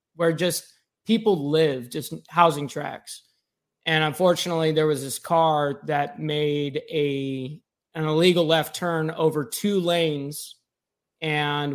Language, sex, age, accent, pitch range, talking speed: English, male, 20-39, American, 155-190 Hz, 125 wpm